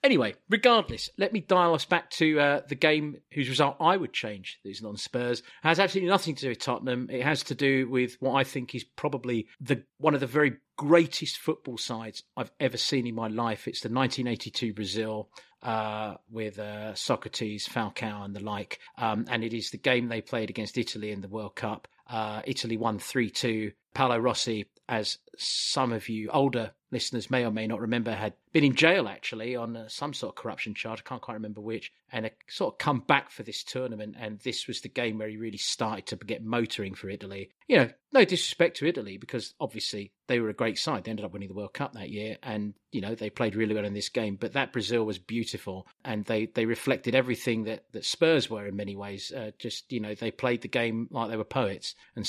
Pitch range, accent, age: 110-130 Hz, British, 40-59